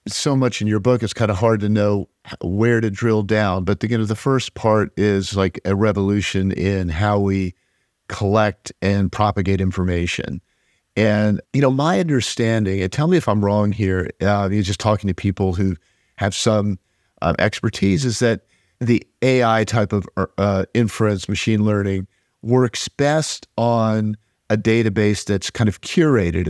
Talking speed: 165 wpm